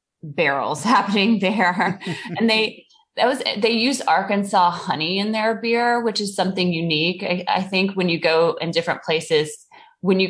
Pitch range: 150-190 Hz